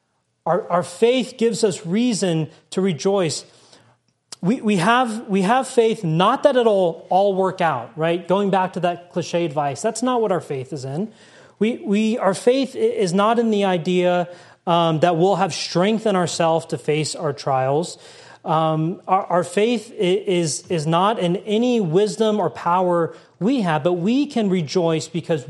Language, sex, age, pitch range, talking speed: English, male, 30-49, 165-220 Hz, 170 wpm